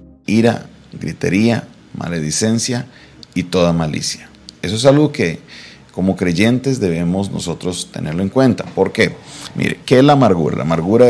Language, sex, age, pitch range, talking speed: Spanish, male, 40-59, 80-100 Hz, 140 wpm